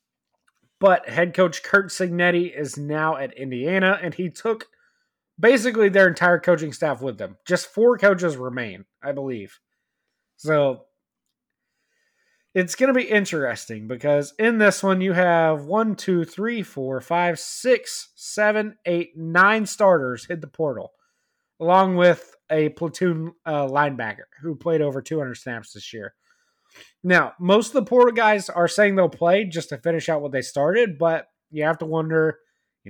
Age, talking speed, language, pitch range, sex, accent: 20-39, 155 wpm, English, 150-200 Hz, male, American